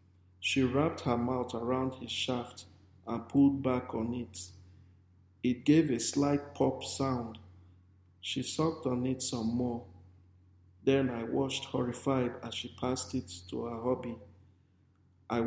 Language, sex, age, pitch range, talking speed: English, male, 50-69, 95-135 Hz, 140 wpm